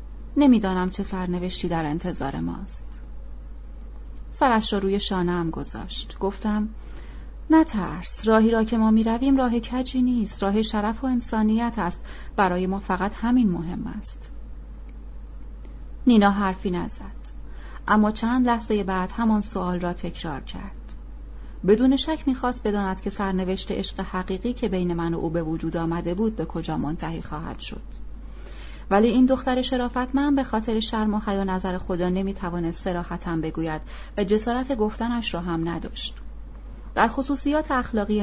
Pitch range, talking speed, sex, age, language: 170-230 Hz, 145 wpm, female, 30-49, Persian